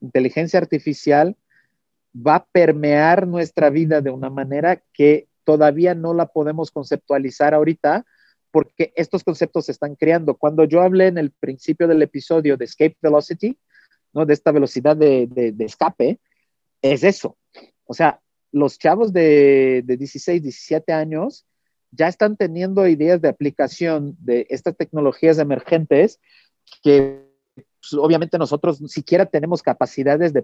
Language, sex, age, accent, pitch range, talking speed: Spanish, male, 40-59, Mexican, 140-170 Hz, 140 wpm